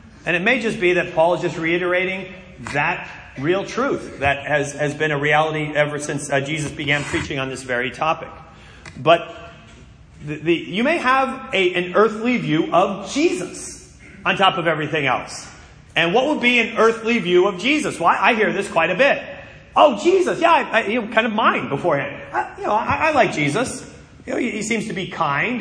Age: 30-49